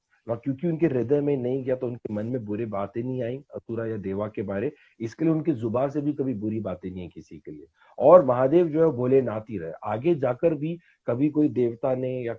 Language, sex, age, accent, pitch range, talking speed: Hindi, male, 40-59, native, 110-140 Hz, 235 wpm